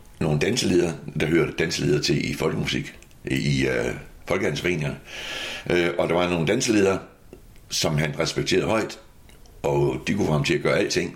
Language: Danish